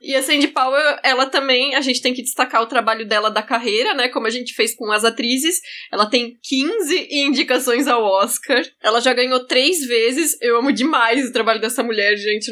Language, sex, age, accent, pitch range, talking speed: Portuguese, female, 10-29, Brazilian, 235-280 Hz, 205 wpm